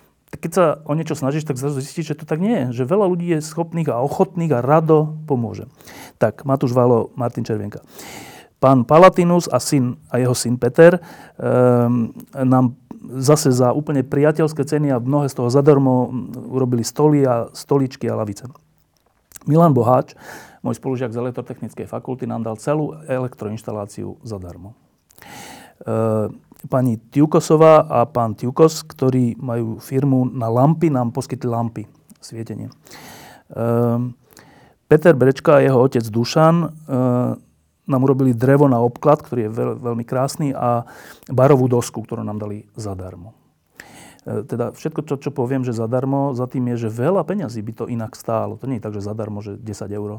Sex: male